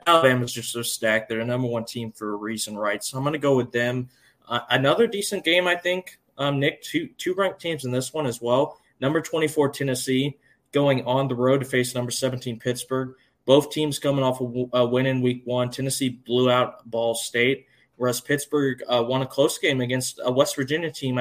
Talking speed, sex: 220 wpm, male